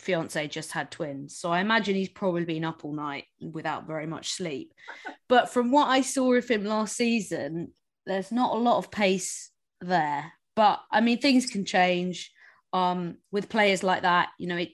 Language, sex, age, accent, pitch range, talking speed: English, female, 20-39, British, 160-195 Hz, 190 wpm